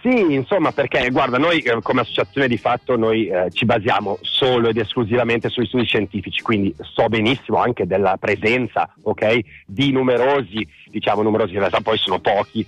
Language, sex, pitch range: Italian, male, 110-135 Hz